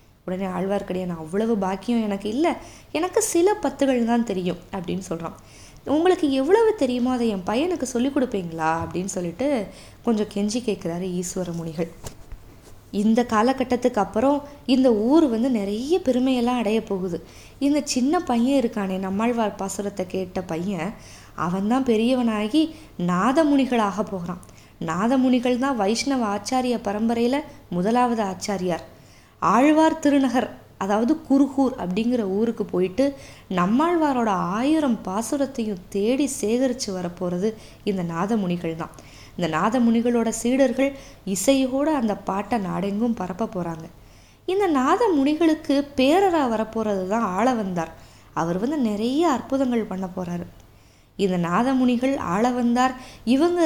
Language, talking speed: Tamil, 110 wpm